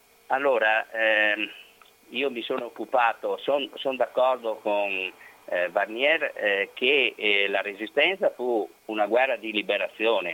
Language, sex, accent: Italian, male, native